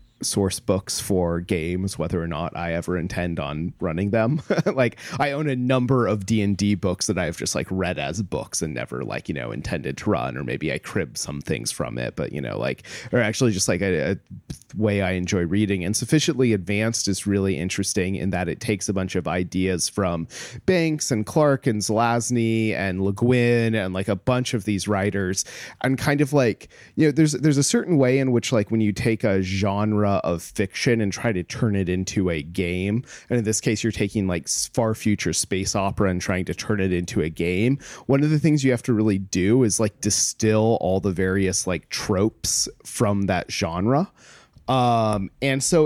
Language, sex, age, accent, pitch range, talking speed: English, male, 30-49, American, 95-120 Hz, 210 wpm